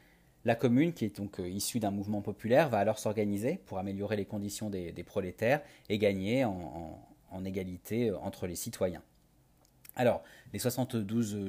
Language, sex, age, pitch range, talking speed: French, male, 30-49, 100-125 Hz, 155 wpm